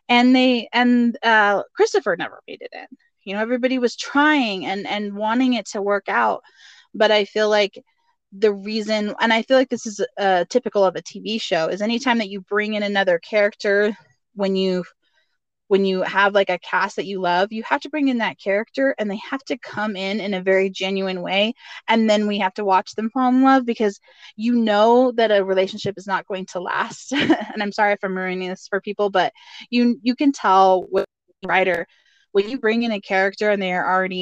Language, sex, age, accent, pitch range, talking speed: English, female, 20-39, American, 190-235 Hz, 215 wpm